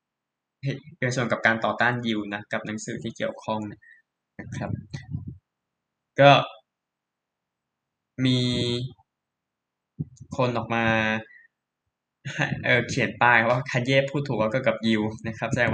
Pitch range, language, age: 110-125 Hz, Thai, 20-39